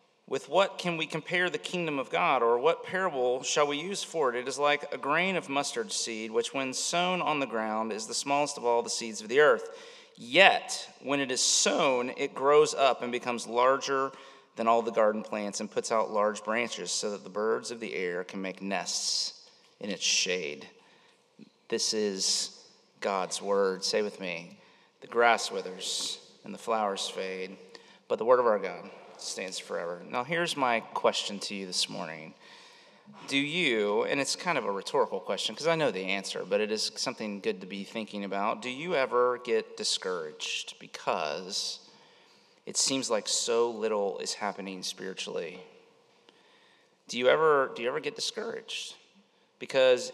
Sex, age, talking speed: male, 30-49, 180 wpm